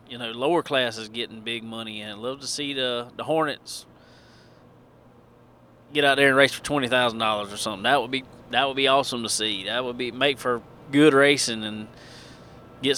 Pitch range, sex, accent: 115-140 Hz, male, American